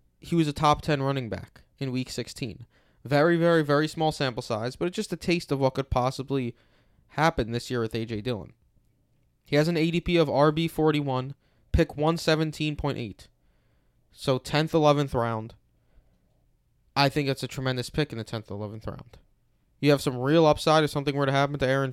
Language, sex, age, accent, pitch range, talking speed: English, male, 20-39, American, 120-150 Hz, 180 wpm